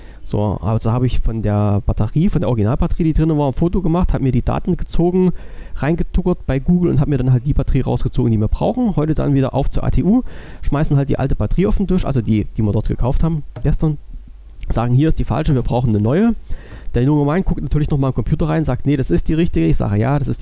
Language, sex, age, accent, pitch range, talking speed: German, male, 40-59, German, 110-155 Hz, 255 wpm